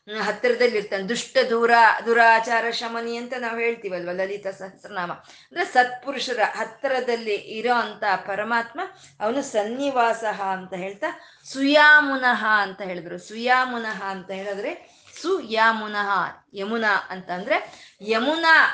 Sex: female